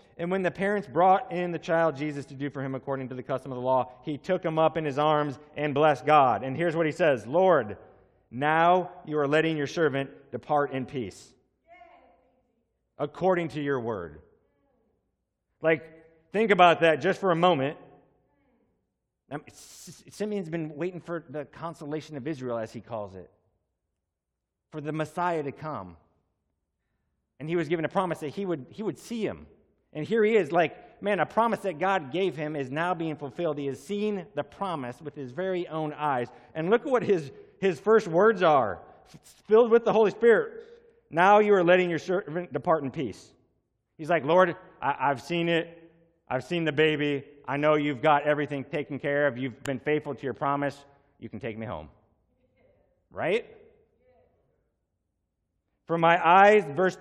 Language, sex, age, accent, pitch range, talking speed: English, male, 30-49, American, 140-180 Hz, 180 wpm